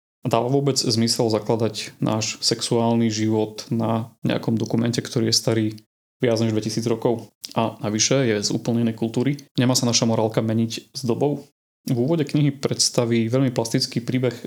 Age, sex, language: 30-49, male, Slovak